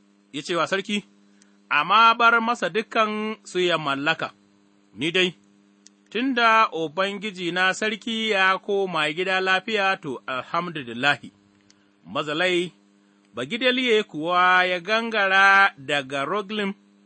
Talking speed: 115 wpm